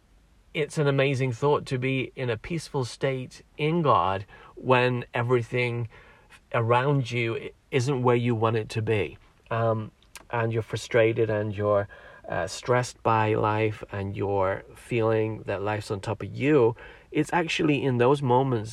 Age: 40-59